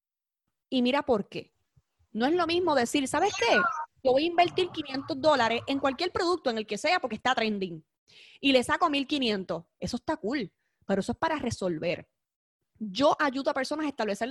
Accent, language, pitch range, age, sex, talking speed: American, Spanish, 210-310 Hz, 20-39, female, 190 wpm